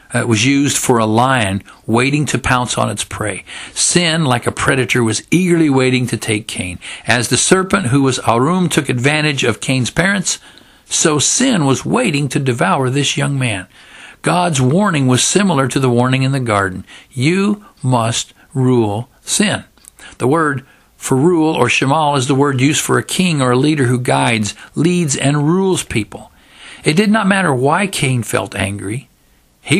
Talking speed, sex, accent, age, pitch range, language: 175 wpm, male, American, 50-69, 115-150 Hz, English